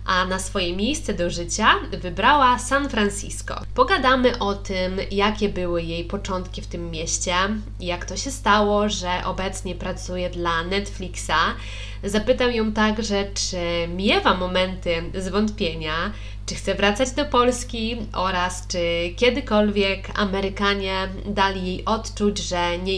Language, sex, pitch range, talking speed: Polish, female, 170-210 Hz, 130 wpm